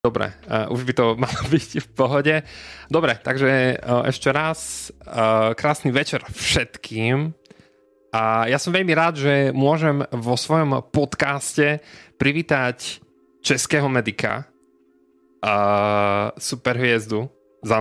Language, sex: Slovak, male